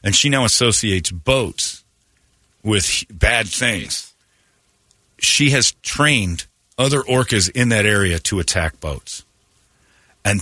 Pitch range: 90-115 Hz